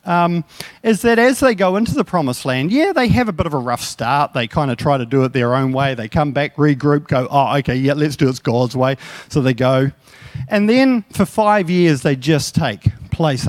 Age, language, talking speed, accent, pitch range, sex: 40-59, English, 240 wpm, Australian, 130-215 Hz, male